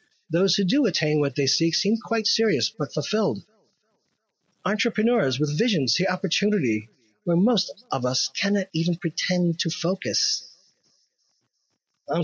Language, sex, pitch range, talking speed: English, male, 140-175 Hz, 130 wpm